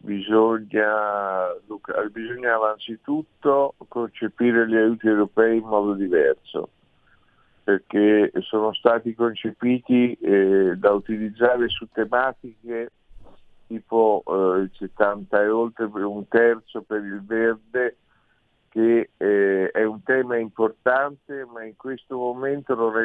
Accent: native